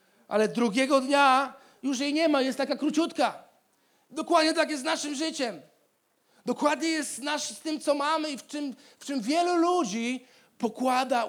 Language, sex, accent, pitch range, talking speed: Polish, male, native, 210-275 Hz, 155 wpm